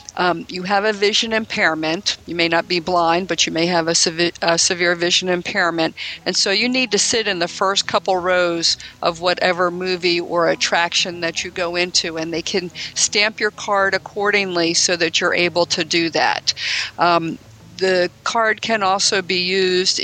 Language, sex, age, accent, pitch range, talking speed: English, female, 50-69, American, 165-190 Hz, 185 wpm